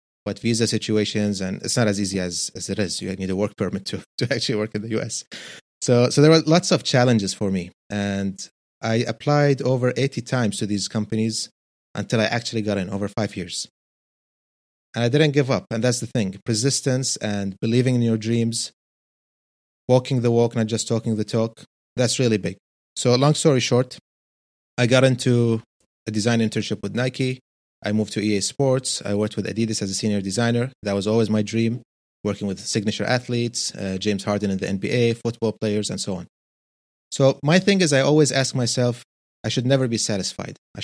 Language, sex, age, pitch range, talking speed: English, male, 30-49, 105-125 Hz, 200 wpm